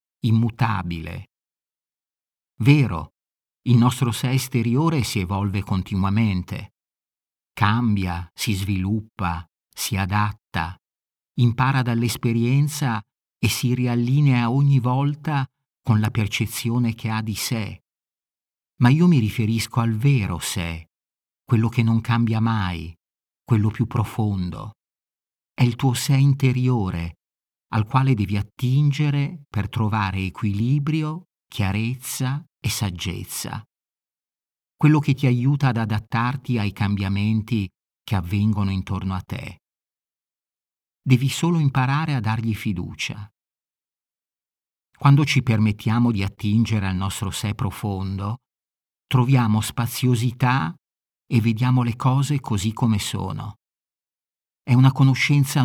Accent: native